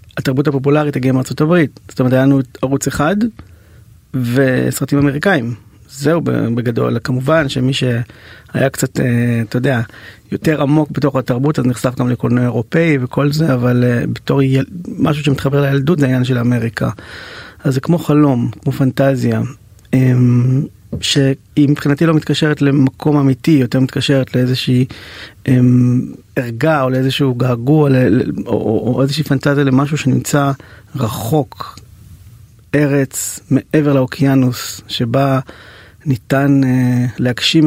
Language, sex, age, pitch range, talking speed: Hebrew, male, 30-49, 120-140 Hz, 120 wpm